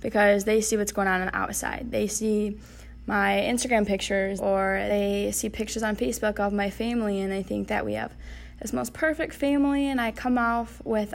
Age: 10-29